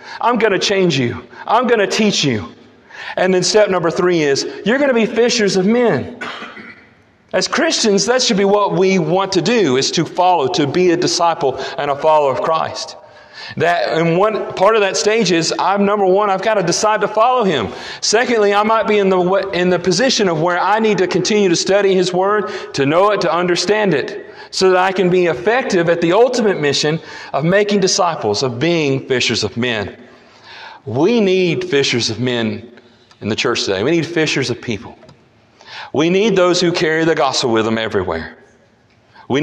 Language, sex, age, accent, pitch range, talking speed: English, male, 40-59, American, 155-205 Hz, 200 wpm